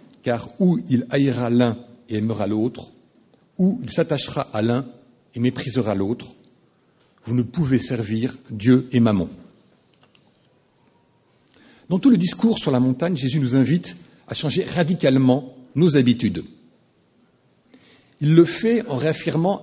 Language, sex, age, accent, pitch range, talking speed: English, male, 60-79, French, 125-165 Hz, 130 wpm